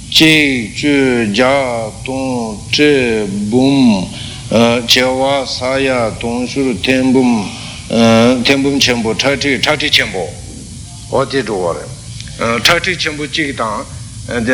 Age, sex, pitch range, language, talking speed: 60-79, male, 115-145 Hz, Italian, 100 wpm